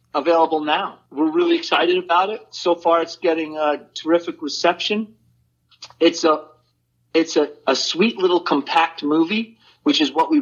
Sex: male